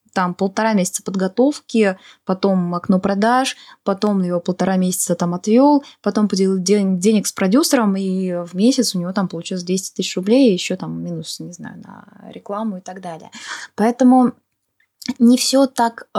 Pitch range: 185-230 Hz